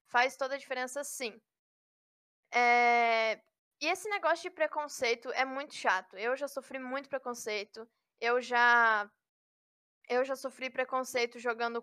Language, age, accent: Portuguese, 10-29, Brazilian